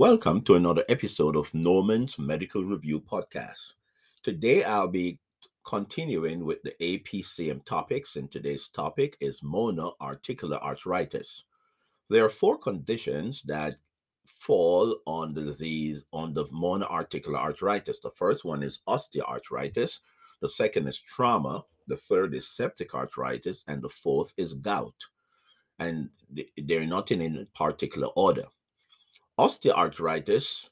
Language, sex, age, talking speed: English, male, 50-69, 120 wpm